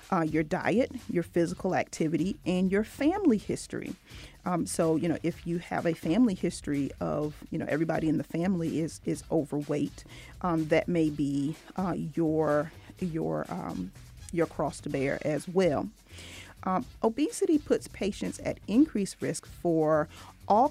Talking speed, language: 155 wpm, English